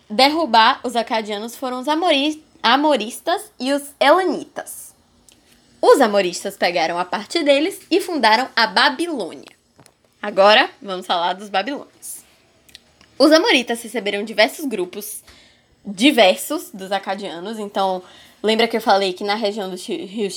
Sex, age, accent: female, 10-29, Brazilian